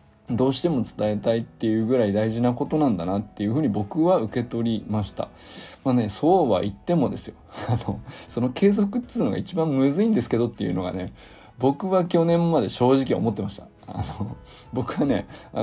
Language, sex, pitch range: Japanese, male, 105-160 Hz